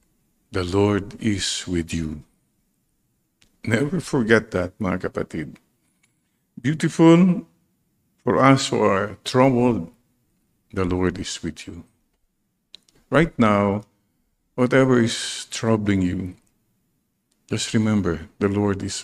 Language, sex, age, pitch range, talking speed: English, male, 50-69, 90-120 Hz, 100 wpm